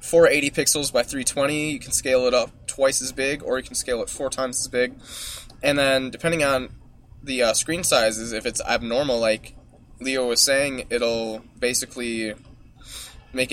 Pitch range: 115-140 Hz